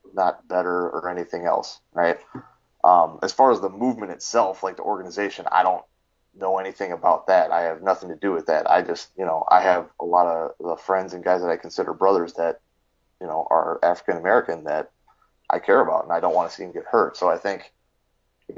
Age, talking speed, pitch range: 30-49, 225 wpm, 85-100 Hz